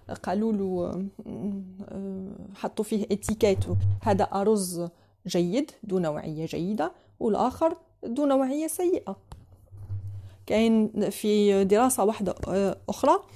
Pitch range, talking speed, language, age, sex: 185-235 Hz, 90 wpm, Arabic, 30-49, female